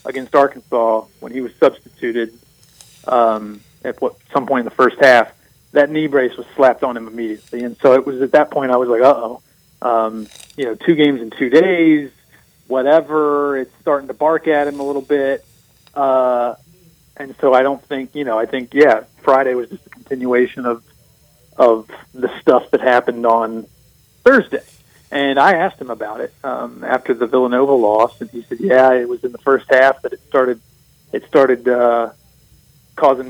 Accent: American